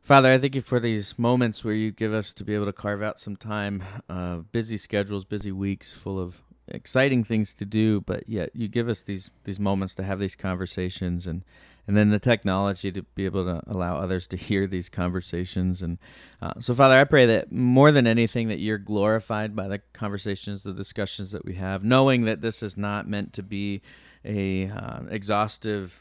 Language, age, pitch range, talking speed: English, 40-59, 95-110 Hz, 205 wpm